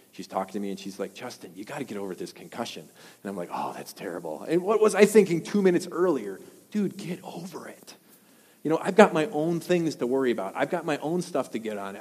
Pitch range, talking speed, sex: 115-195 Hz, 255 wpm, male